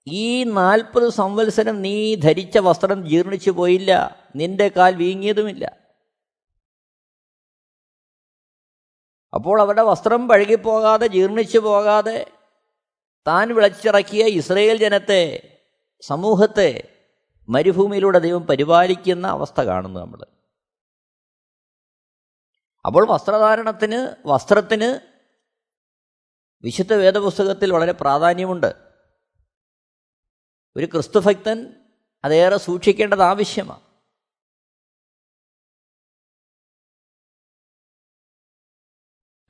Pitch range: 190-230 Hz